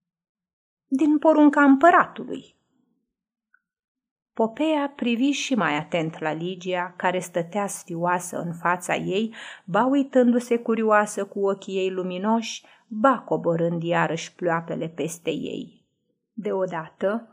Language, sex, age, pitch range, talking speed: Romanian, female, 30-49, 170-225 Hz, 100 wpm